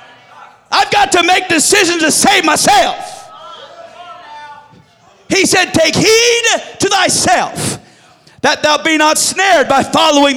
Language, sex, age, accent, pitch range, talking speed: English, male, 40-59, American, 210-320 Hz, 120 wpm